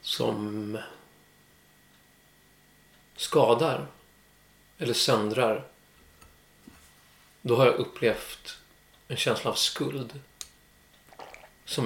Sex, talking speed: male, 65 wpm